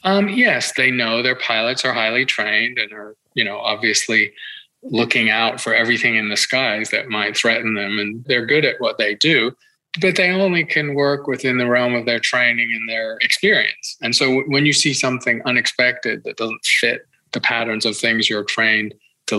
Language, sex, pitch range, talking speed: English, male, 110-125 Hz, 195 wpm